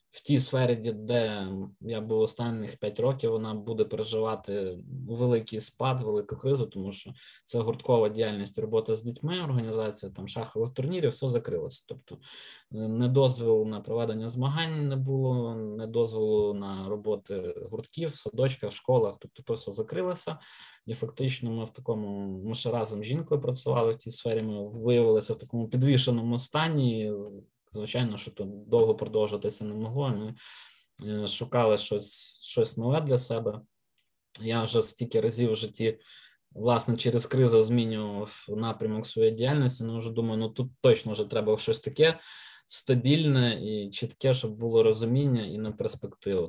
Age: 20-39